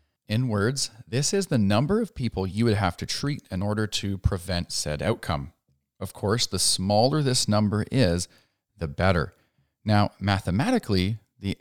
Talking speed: 160 wpm